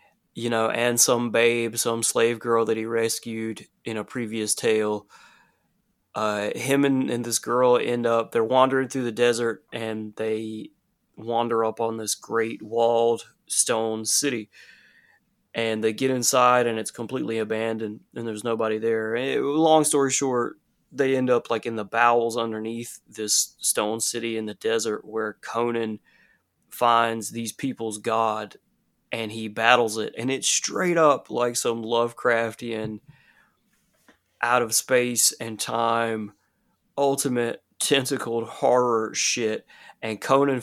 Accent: American